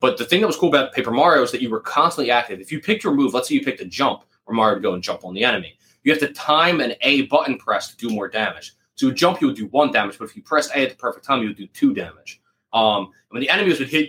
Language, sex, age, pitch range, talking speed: English, male, 20-39, 105-145 Hz, 325 wpm